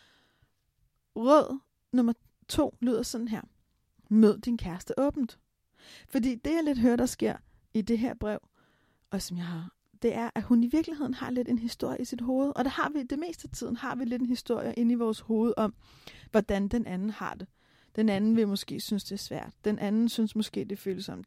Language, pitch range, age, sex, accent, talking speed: Danish, 200-250 Hz, 30-49, female, native, 215 wpm